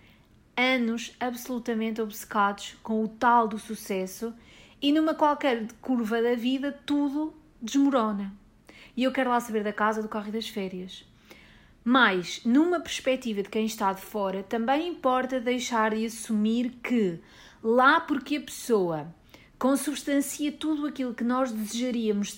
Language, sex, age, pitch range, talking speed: English, female, 40-59, 215-265 Hz, 140 wpm